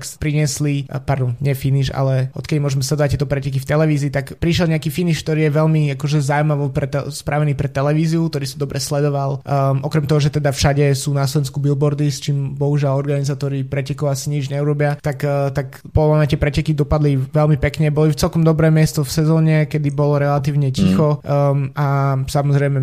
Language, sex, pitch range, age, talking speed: Slovak, male, 135-150 Hz, 20-39, 185 wpm